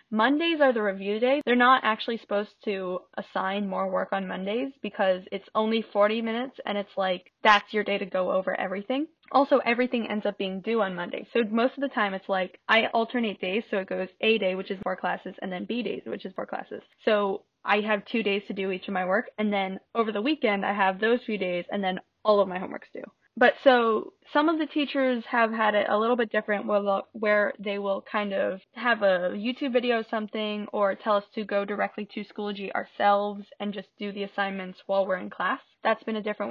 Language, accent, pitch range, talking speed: English, American, 195-235 Hz, 230 wpm